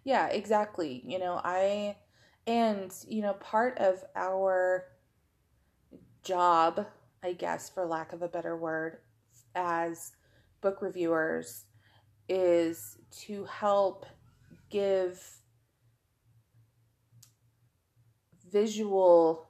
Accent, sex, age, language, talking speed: American, female, 30-49, English, 85 wpm